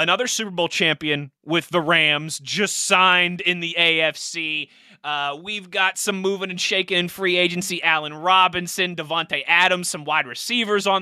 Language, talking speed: English, 165 wpm